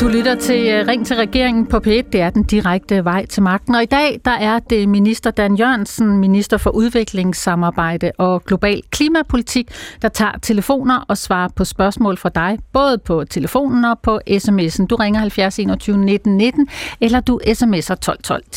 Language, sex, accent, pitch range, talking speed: Danish, female, native, 200-240 Hz, 170 wpm